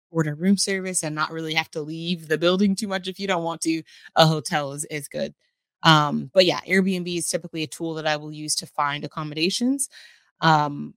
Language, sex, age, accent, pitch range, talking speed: English, female, 20-39, American, 150-175 Hz, 215 wpm